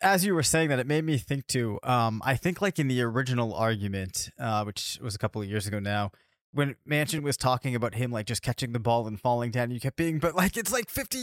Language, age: English, 20-39